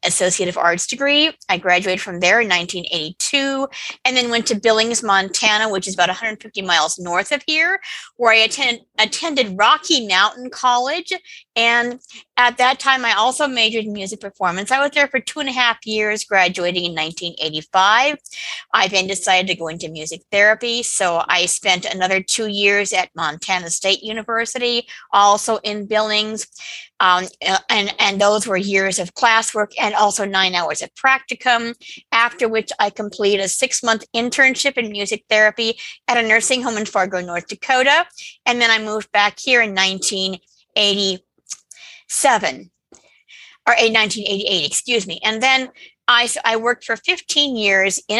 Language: English